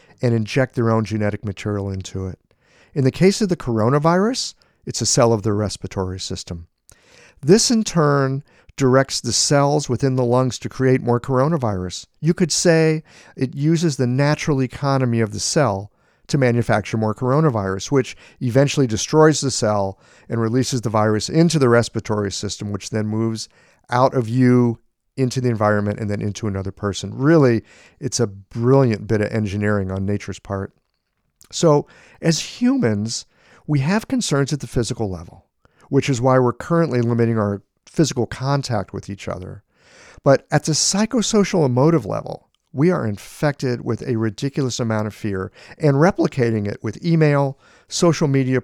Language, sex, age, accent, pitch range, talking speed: English, male, 50-69, American, 105-145 Hz, 160 wpm